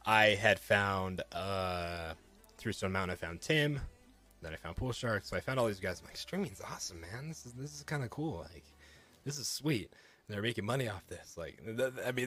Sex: male